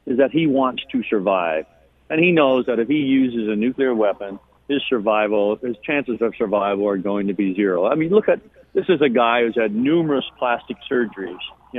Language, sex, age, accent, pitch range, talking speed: English, male, 50-69, American, 120-145 Hz, 210 wpm